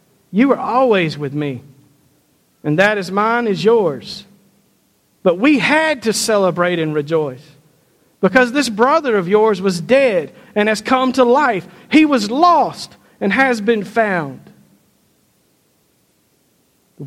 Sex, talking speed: male, 135 wpm